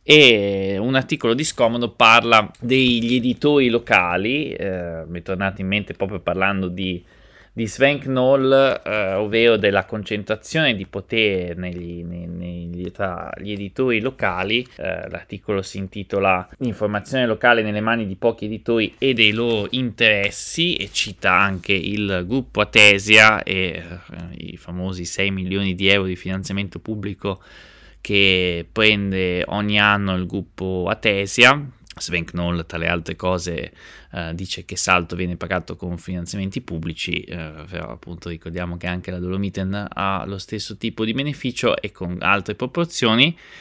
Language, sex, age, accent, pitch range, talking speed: Italian, male, 20-39, native, 90-115 Hz, 140 wpm